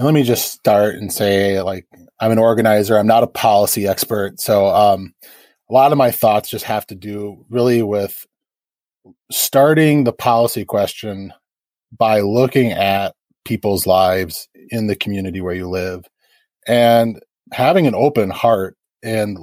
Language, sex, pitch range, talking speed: English, male, 95-120 Hz, 150 wpm